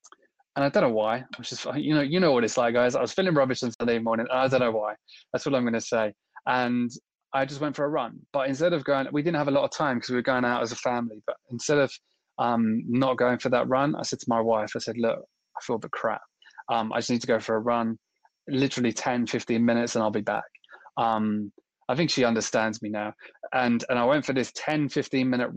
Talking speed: 270 wpm